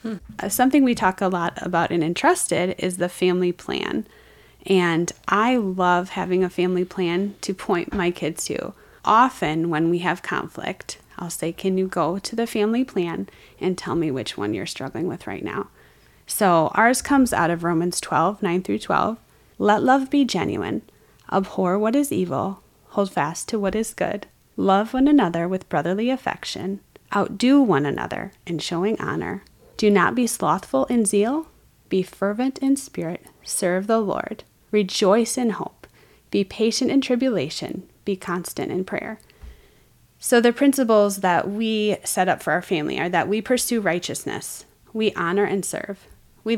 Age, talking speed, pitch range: 30-49, 165 wpm, 180-225 Hz